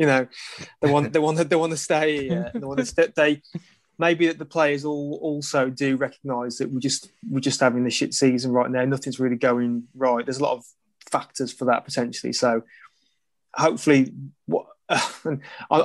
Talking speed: 190 wpm